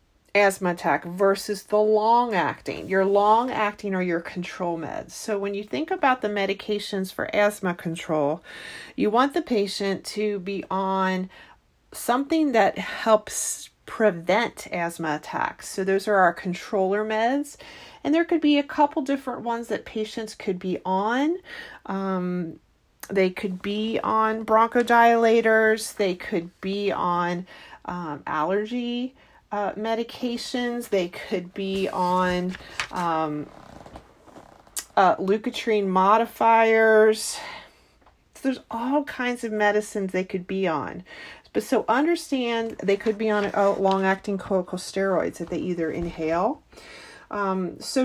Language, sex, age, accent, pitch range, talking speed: English, female, 40-59, American, 185-225 Hz, 130 wpm